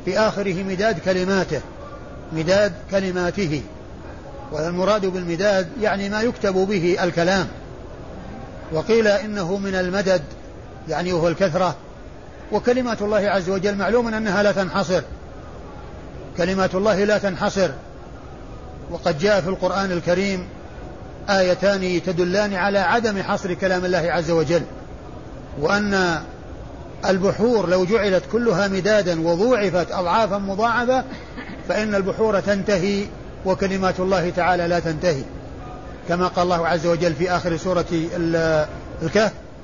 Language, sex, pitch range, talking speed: Arabic, male, 175-200 Hz, 110 wpm